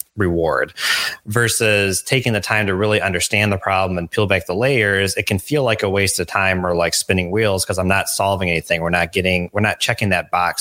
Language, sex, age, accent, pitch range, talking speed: English, male, 20-39, American, 90-105 Hz, 225 wpm